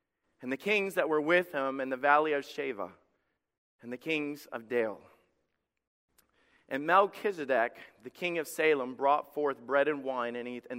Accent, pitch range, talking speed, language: American, 135-175 Hz, 160 wpm, English